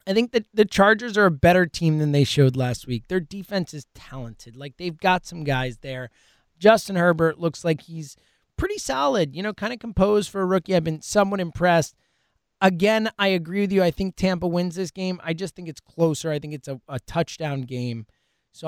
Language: English